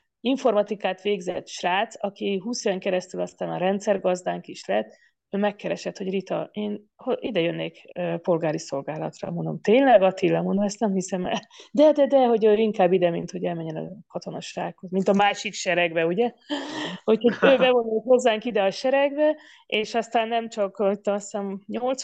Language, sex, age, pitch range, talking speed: Hungarian, female, 30-49, 180-225 Hz, 155 wpm